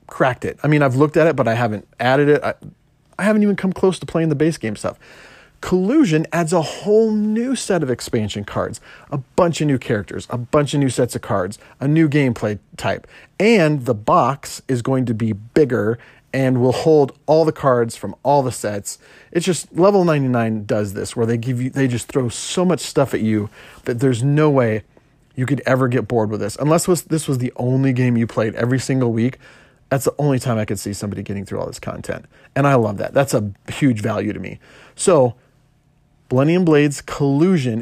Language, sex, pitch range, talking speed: English, male, 115-155 Hz, 215 wpm